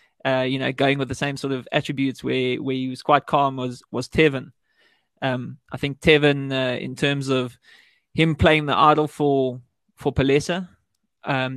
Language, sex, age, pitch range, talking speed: English, male, 20-39, 130-150 Hz, 180 wpm